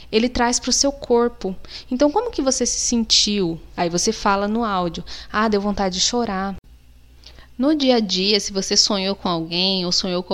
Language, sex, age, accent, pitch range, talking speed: Portuguese, female, 20-39, Brazilian, 180-230 Hz, 195 wpm